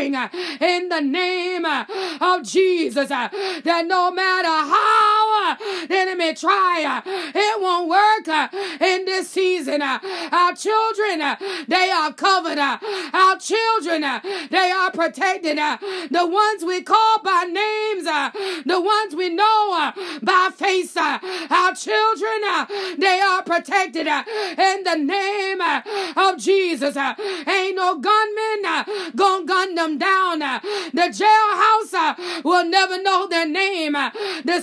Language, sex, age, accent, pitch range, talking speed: English, female, 30-49, American, 340-405 Hz, 110 wpm